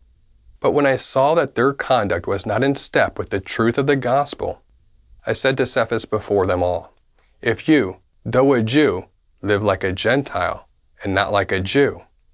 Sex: male